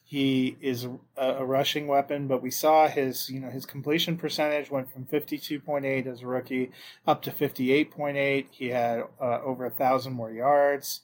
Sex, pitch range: male, 120-140 Hz